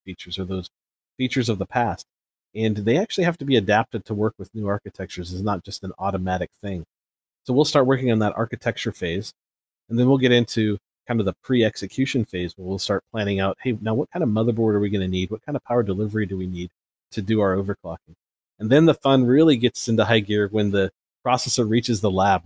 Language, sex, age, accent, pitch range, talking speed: English, male, 40-59, American, 95-115 Hz, 230 wpm